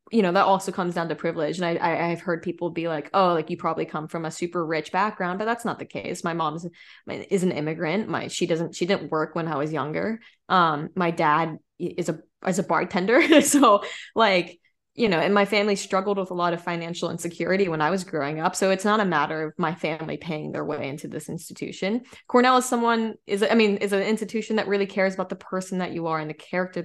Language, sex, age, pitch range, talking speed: English, female, 20-39, 165-205 Hz, 245 wpm